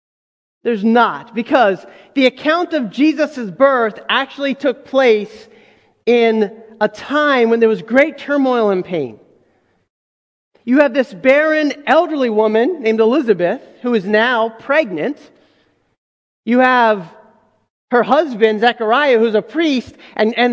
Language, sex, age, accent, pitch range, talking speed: English, male, 30-49, American, 240-315 Hz, 125 wpm